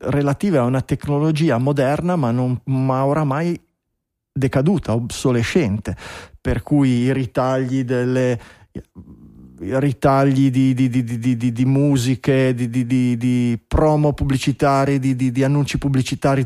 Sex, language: male, Italian